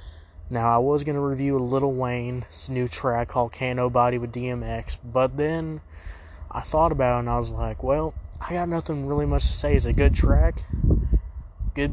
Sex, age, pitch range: male, 20-39, 80-135 Hz